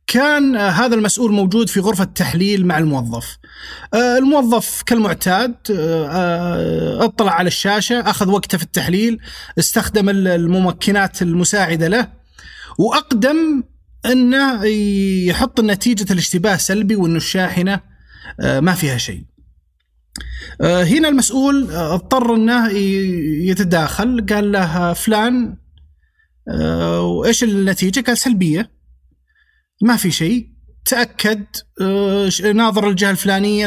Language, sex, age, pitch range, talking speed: Arabic, male, 30-49, 160-230 Hz, 95 wpm